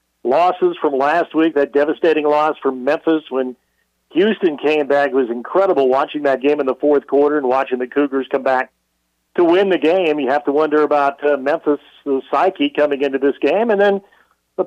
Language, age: English, 50-69